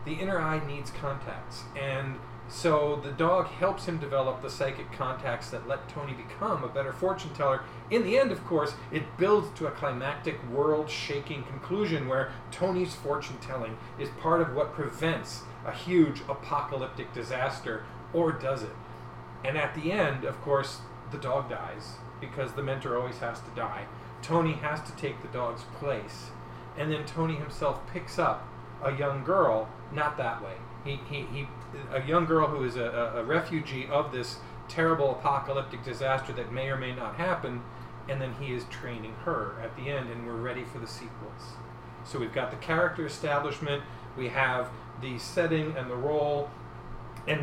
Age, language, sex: 40-59, English, male